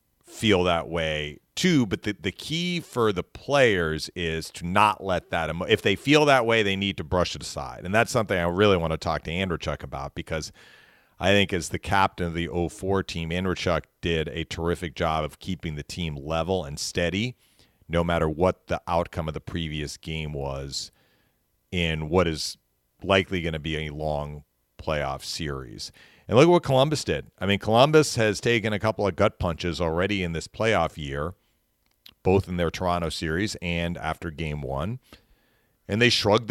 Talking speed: 190 wpm